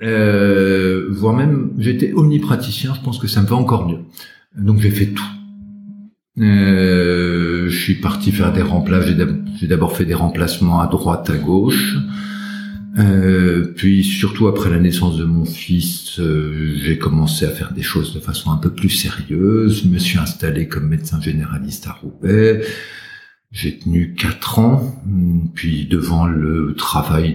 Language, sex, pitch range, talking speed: French, male, 85-110 Hz, 160 wpm